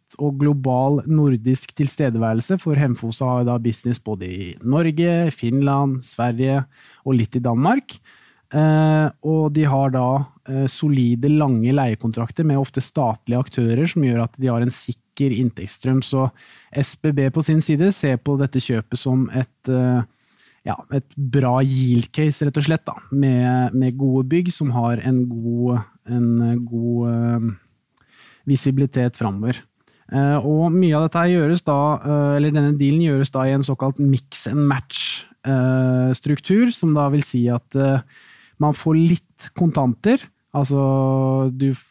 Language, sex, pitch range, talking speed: English, male, 125-150 Hz, 135 wpm